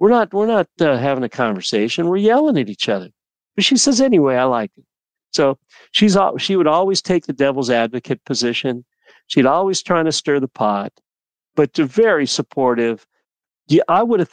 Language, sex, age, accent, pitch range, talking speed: English, male, 40-59, American, 110-140 Hz, 190 wpm